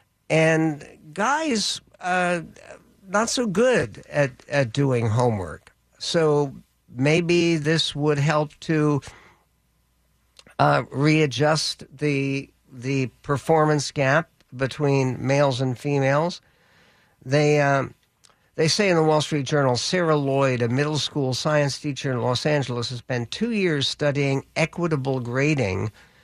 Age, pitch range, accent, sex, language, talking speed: 60-79, 130-155 Hz, American, male, English, 120 wpm